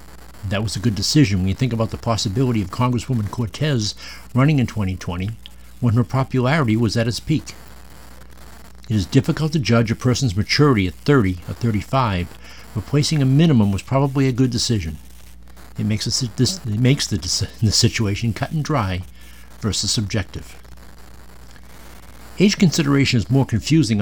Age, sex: 60-79, male